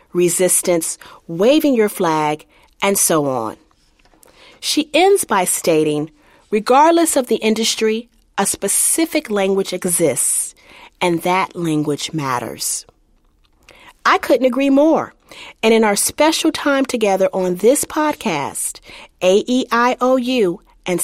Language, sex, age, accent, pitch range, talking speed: English, female, 40-59, American, 180-255 Hz, 110 wpm